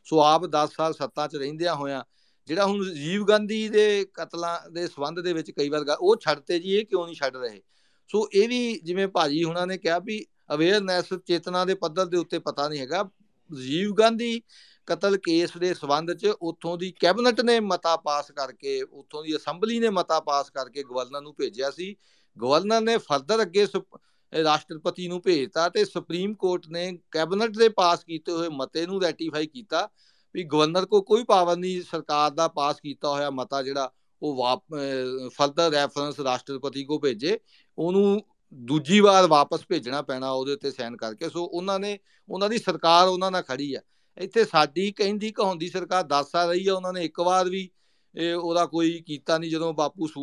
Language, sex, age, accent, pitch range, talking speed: English, male, 50-69, Indian, 150-190 Hz, 125 wpm